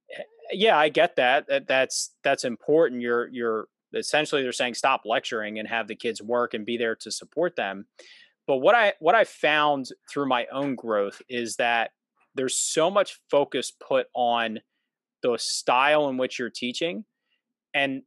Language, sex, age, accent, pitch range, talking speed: English, male, 30-49, American, 120-145 Hz, 170 wpm